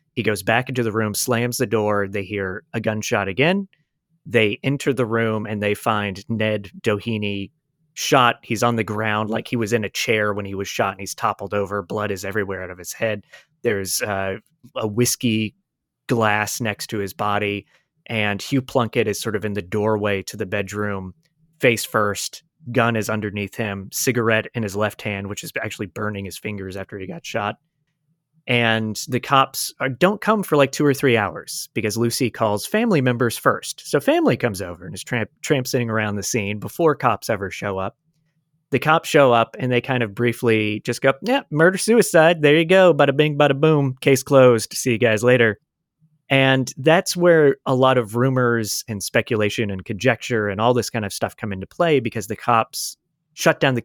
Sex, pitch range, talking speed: male, 105-140 Hz, 200 wpm